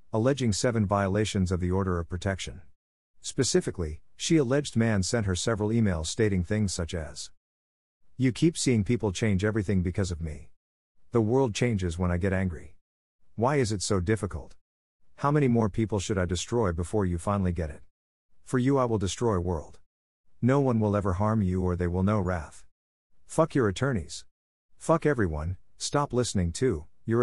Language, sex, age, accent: English, male, 50-69, American